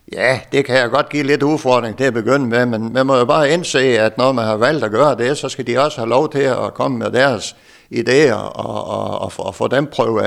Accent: native